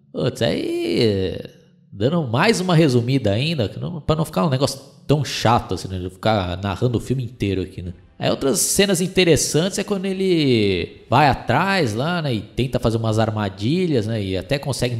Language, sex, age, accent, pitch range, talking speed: Portuguese, male, 20-39, Brazilian, 100-130 Hz, 185 wpm